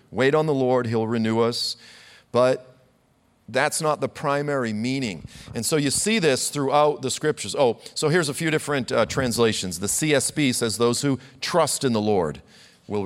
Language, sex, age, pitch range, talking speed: English, male, 40-59, 115-155 Hz, 180 wpm